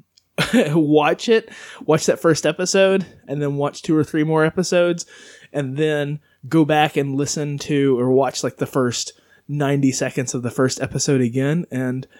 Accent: American